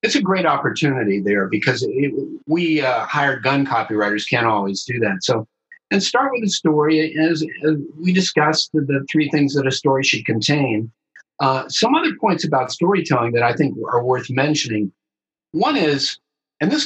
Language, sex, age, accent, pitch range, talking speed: English, male, 50-69, American, 110-155 Hz, 175 wpm